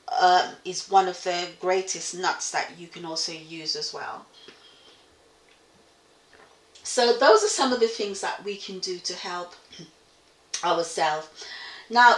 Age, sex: 30-49, female